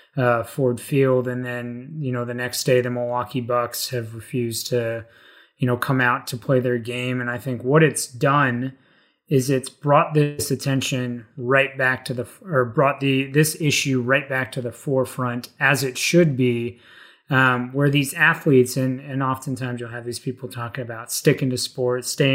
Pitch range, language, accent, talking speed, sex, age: 120-135 Hz, English, American, 190 wpm, male, 30-49